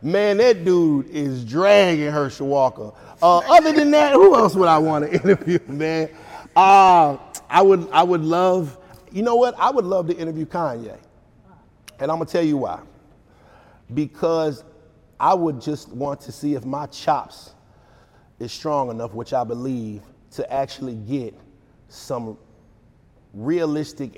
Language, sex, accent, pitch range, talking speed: English, male, American, 115-155 Hz, 150 wpm